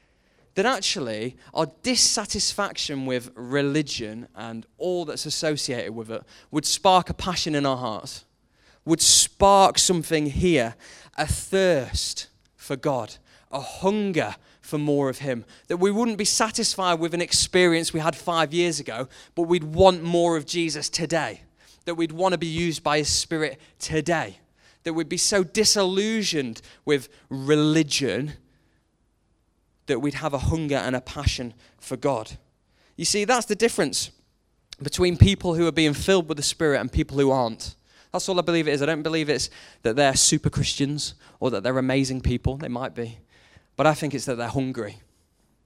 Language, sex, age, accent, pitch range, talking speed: English, male, 20-39, British, 125-170 Hz, 165 wpm